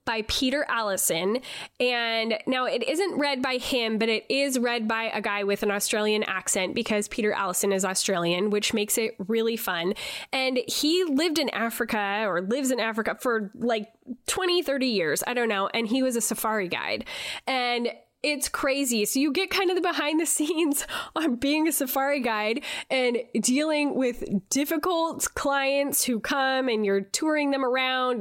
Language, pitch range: English, 215-280 Hz